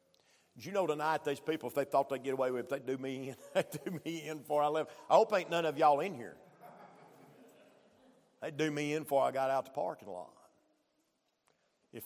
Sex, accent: male, American